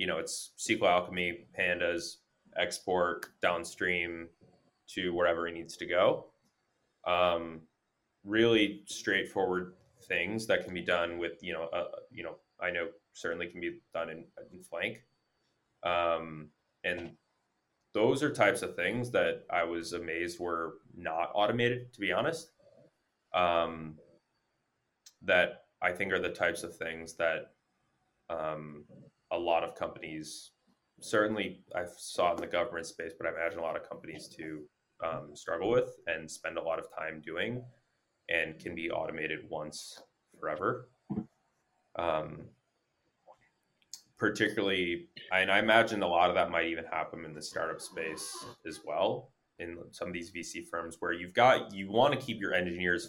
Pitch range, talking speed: 85-100 Hz, 150 wpm